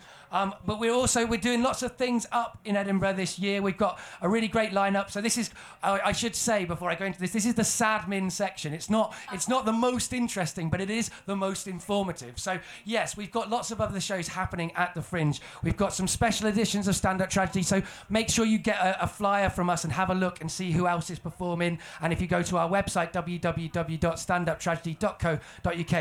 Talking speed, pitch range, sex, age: 230 wpm, 175-230 Hz, male, 30-49